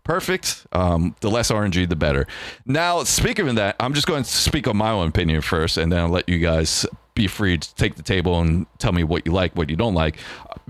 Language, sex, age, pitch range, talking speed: English, male, 30-49, 95-130 Hz, 245 wpm